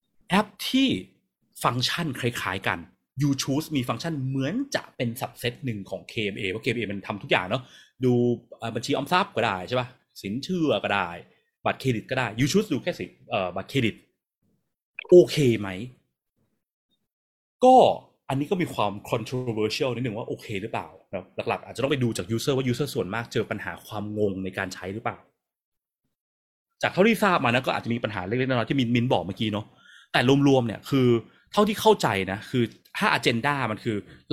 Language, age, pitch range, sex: Thai, 30-49, 110-145 Hz, male